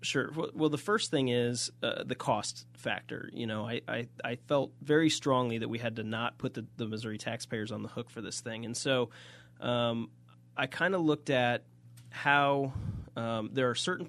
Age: 30-49